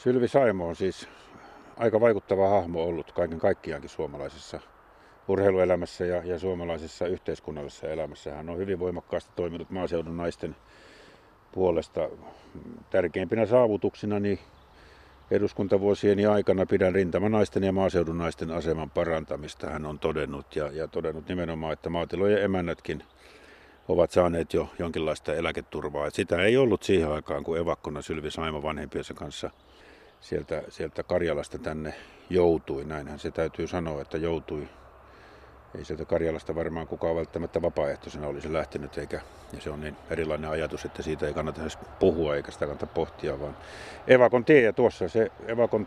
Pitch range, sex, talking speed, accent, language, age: 80-95 Hz, male, 145 wpm, native, Finnish, 50-69